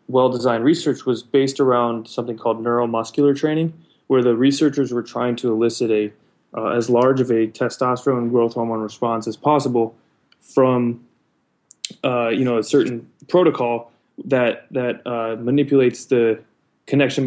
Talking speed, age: 145 wpm, 20-39